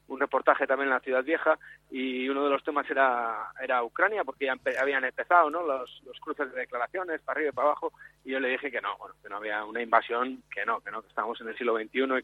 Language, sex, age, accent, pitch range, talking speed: Spanish, male, 30-49, Spanish, 125-155 Hz, 265 wpm